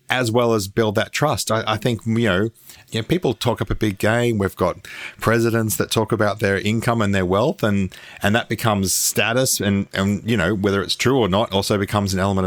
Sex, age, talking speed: male, 40-59, 235 wpm